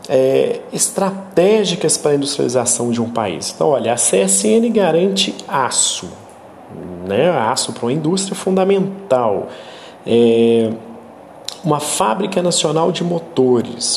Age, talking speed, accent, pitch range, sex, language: 40-59, 110 wpm, Brazilian, 125-170 Hz, male, Romanian